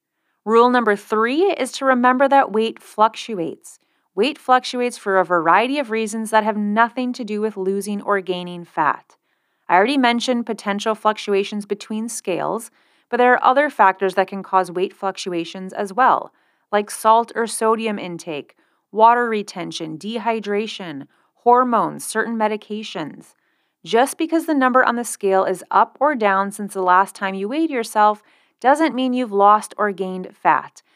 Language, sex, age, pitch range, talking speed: English, female, 30-49, 195-250 Hz, 155 wpm